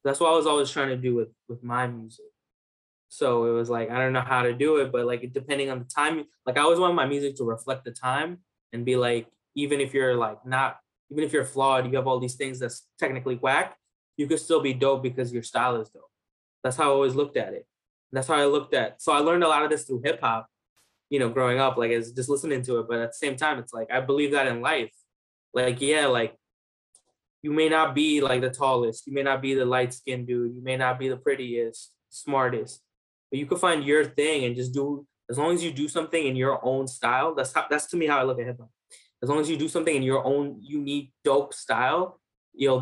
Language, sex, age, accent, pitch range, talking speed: English, male, 20-39, American, 125-145 Hz, 255 wpm